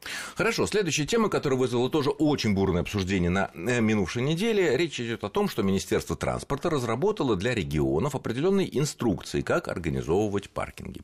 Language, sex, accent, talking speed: Russian, male, native, 145 wpm